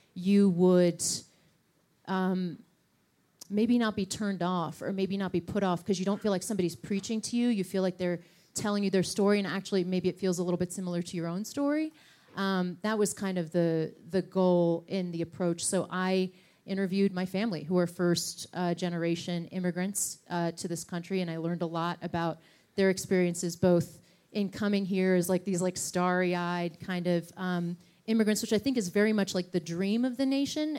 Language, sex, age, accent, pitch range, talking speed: English, female, 30-49, American, 175-195 Hz, 200 wpm